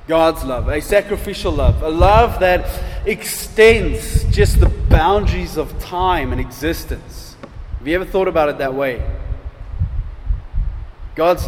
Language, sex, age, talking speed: English, male, 20-39, 130 wpm